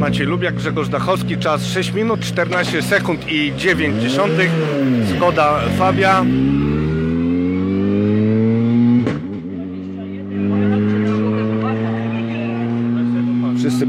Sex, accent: male, native